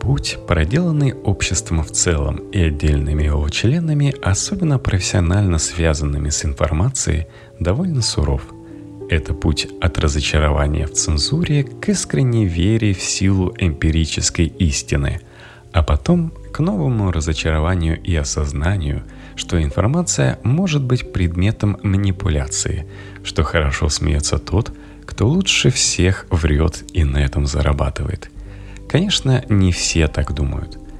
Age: 30-49